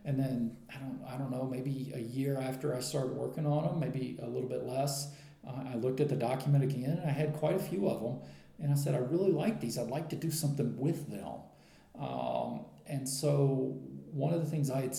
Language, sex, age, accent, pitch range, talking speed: English, male, 40-59, American, 130-150 Hz, 235 wpm